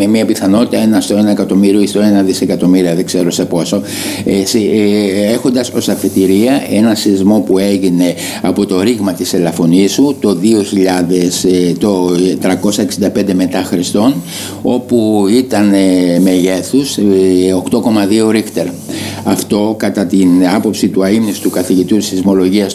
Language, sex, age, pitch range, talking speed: Greek, male, 60-79, 90-105 Hz, 135 wpm